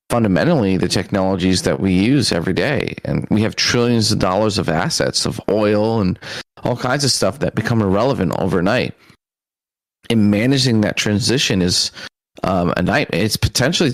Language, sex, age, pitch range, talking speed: English, male, 30-49, 95-115 Hz, 160 wpm